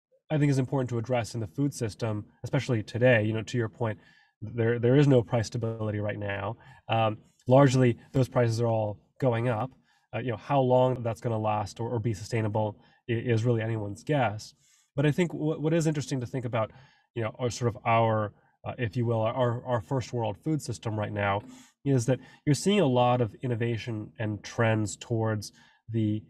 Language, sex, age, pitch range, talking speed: English, male, 20-39, 110-130 Hz, 205 wpm